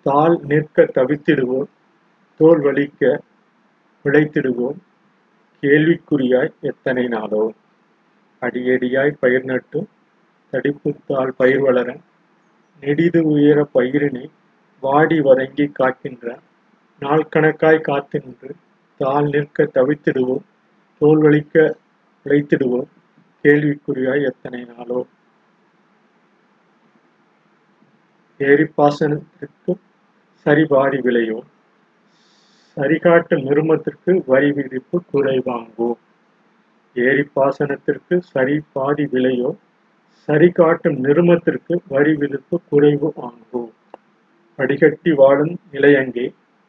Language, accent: Tamil, native